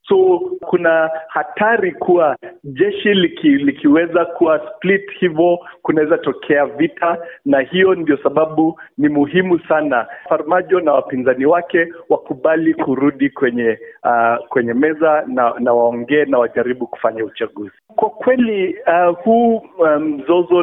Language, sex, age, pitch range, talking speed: Swahili, male, 50-69, 135-190 Hz, 125 wpm